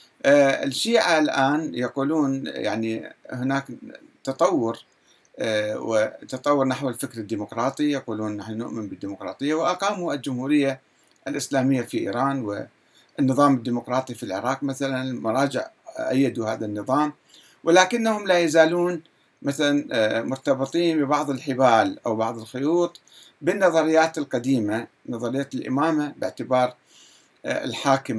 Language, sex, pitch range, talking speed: Arabic, male, 110-145 Hz, 95 wpm